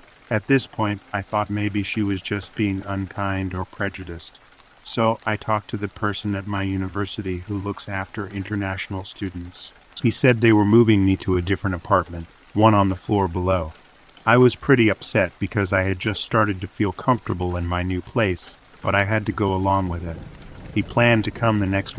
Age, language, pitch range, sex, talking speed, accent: 40-59, English, 95-110 Hz, male, 195 wpm, American